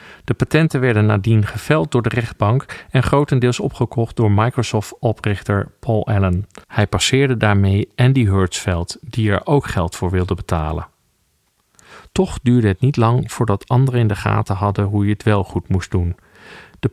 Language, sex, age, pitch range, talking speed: Dutch, male, 40-59, 105-135 Hz, 165 wpm